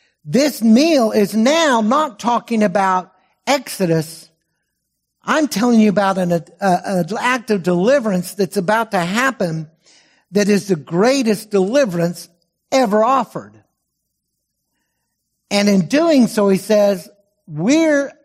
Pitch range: 165-225 Hz